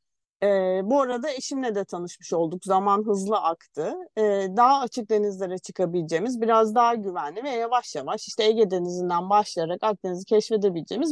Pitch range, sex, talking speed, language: 190-250 Hz, female, 145 wpm, Turkish